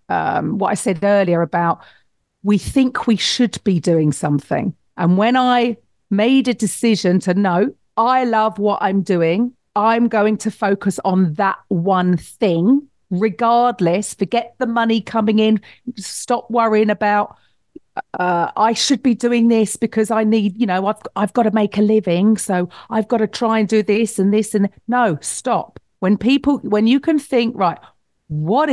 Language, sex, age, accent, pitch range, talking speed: English, female, 40-59, British, 190-240 Hz, 175 wpm